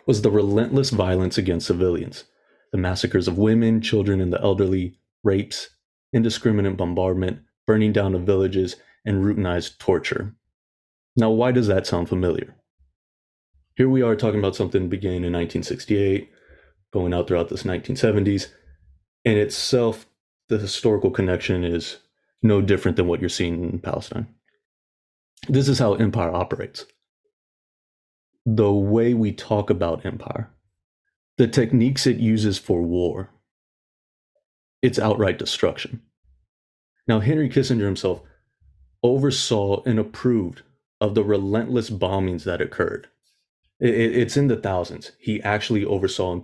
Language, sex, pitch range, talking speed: English, male, 90-115 Hz, 130 wpm